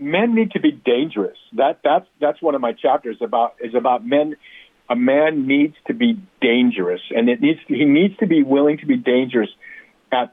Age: 50-69